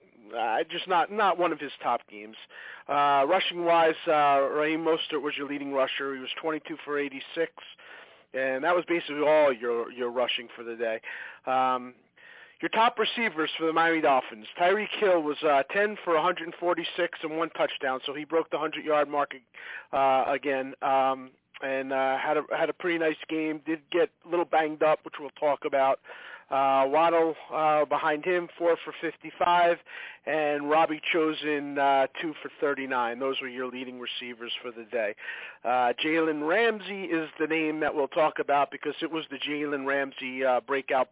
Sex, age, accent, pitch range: male, 40-59, American, 130-160 Hz